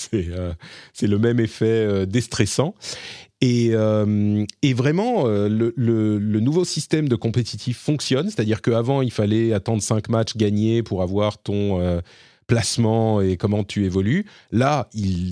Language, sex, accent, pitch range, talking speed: French, male, French, 105-150 Hz, 155 wpm